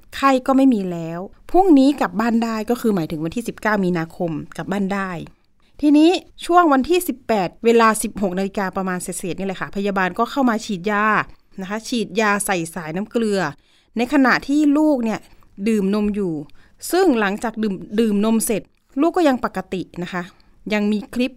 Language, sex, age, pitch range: Thai, female, 30-49, 190-260 Hz